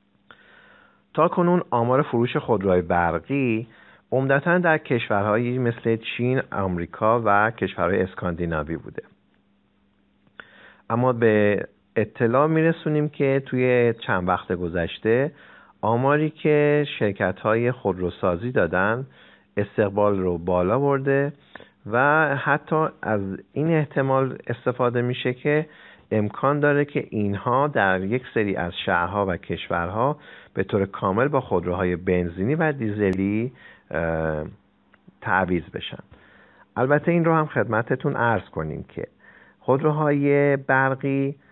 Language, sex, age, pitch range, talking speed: Persian, male, 50-69, 95-140 Hz, 105 wpm